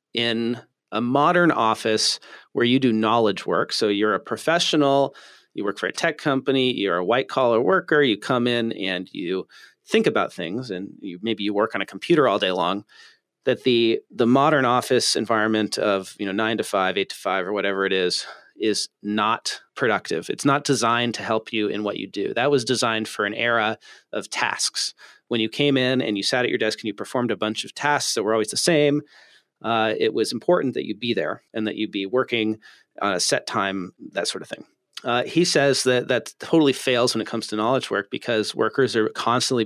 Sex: male